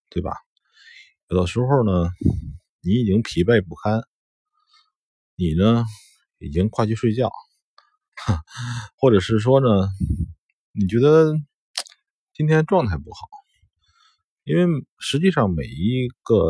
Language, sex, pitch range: Chinese, male, 90-145 Hz